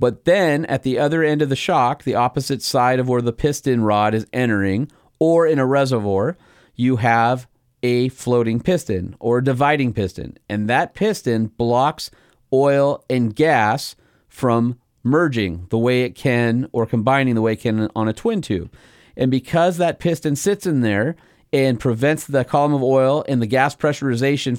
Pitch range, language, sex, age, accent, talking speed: 110-135 Hz, English, male, 40-59, American, 175 wpm